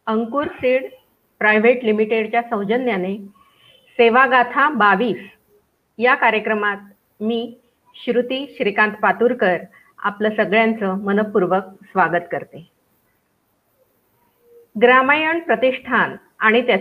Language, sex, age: Marathi, female, 50-69